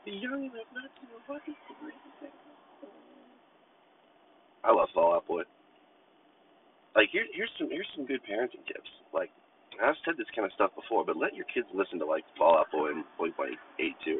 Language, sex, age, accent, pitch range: English, male, 30-49, American, 310-360 Hz